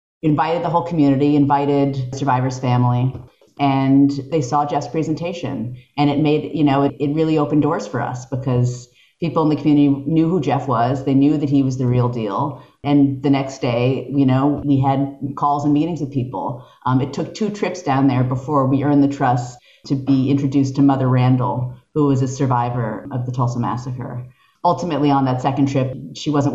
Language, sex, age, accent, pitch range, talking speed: English, female, 40-59, American, 125-145 Hz, 195 wpm